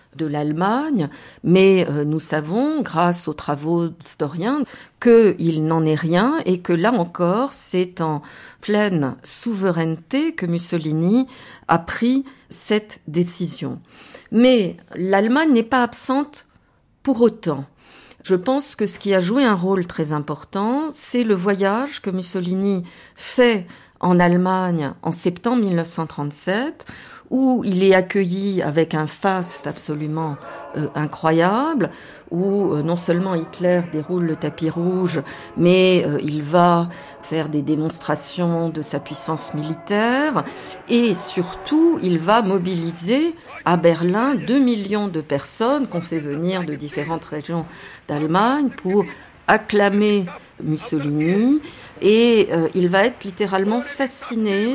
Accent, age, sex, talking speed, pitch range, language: French, 50-69, female, 125 wpm, 160-220 Hz, French